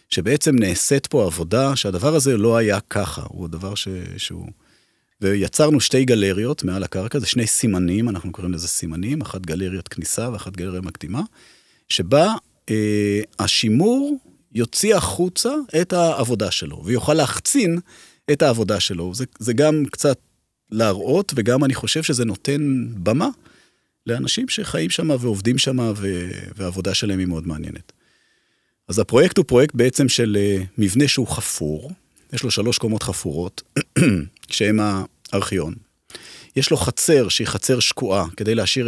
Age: 40-59